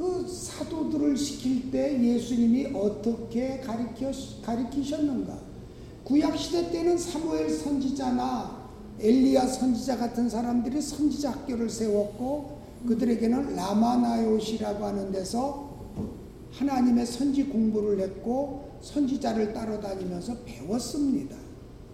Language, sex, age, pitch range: Korean, male, 50-69, 210-275 Hz